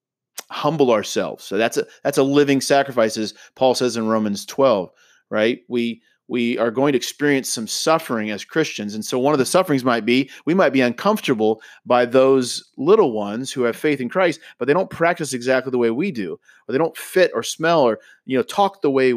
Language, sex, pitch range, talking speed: English, male, 110-145 Hz, 215 wpm